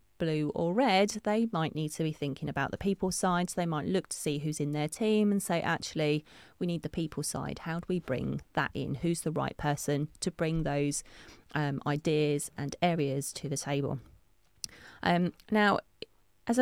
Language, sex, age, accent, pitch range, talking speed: English, female, 30-49, British, 140-175 Hz, 195 wpm